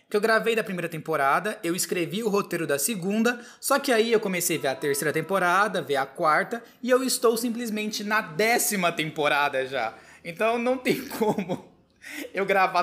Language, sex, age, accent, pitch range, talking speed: Portuguese, male, 20-39, Brazilian, 155-220 Hz, 180 wpm